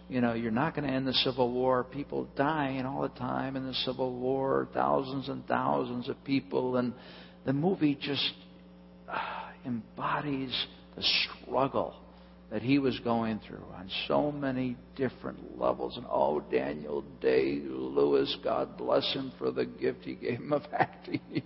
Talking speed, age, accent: 160 wpm, 50-69, American